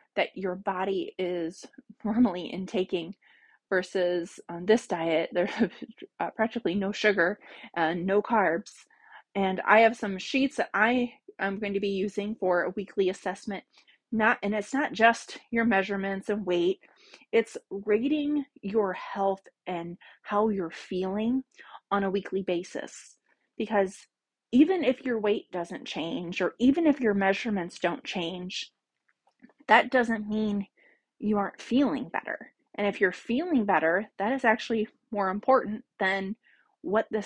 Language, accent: English, American